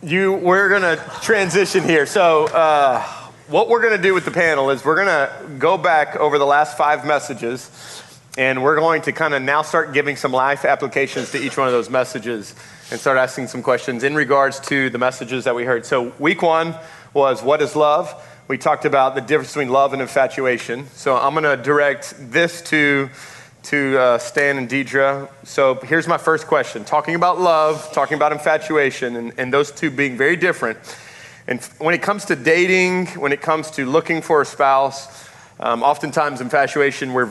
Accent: American